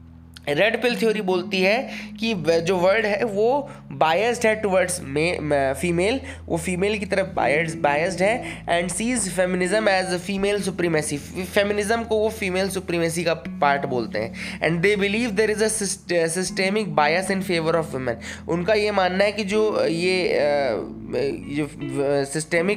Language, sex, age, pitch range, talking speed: English, male, 20-39, 155-200 Hz, 155 wpm